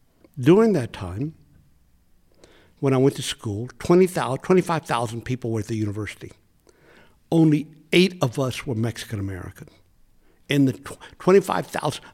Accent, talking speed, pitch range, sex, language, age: American, 115 wpm, 105-160 Hz, male, English, 60-79